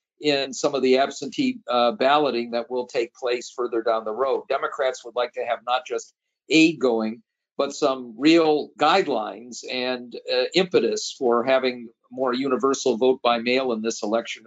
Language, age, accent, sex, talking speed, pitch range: English, 50-69, American, male, 170 wpm, 125-150 Hz